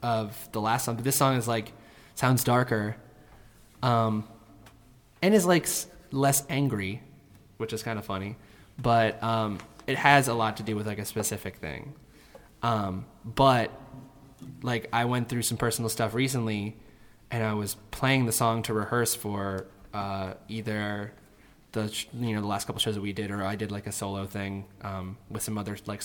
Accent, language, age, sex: American, English, 20-39, male